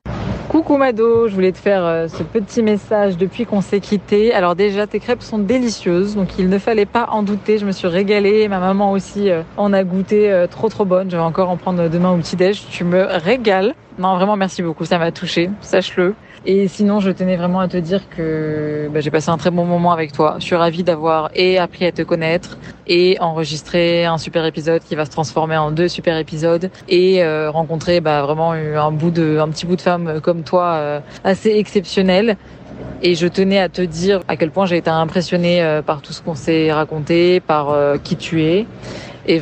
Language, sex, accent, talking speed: French, female, French, 215 wpm